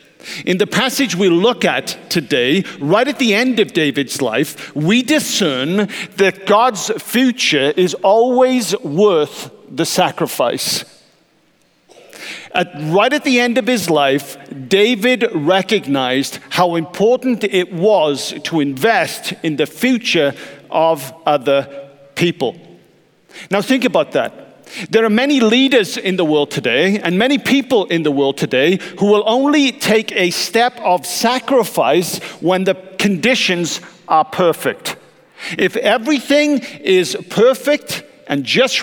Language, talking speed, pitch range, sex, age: English, 130 wpm, 180-250 Hz, male, 50-69